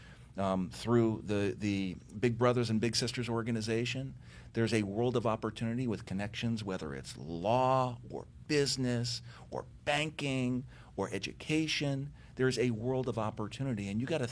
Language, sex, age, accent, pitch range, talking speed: English, male, 50-69, American, 105-130 Hz, 145 wpm